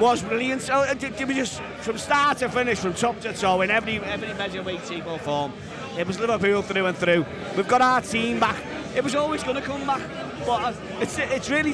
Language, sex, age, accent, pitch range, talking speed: English, male, 30-49, British, 195-240 Hz, 235 wpm